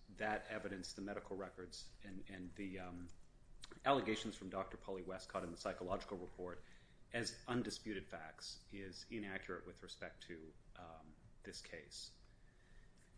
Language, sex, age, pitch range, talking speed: English, male, 30-49, 90-110 Hz, 130 wpm